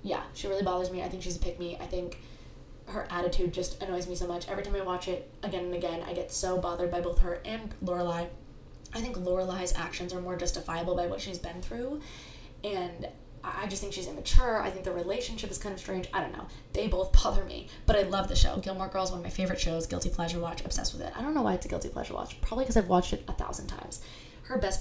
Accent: American